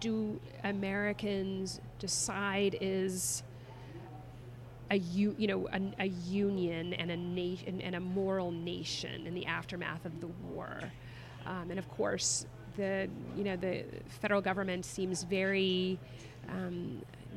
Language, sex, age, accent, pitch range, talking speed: English, female, 30-49, American, 175-200 Hz, 125 wpm